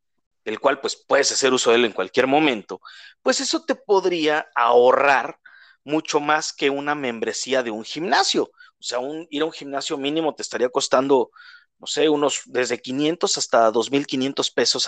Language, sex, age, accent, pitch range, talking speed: Spanish, male, 40-59, Mexican, 135-205 Hz, 170 wpm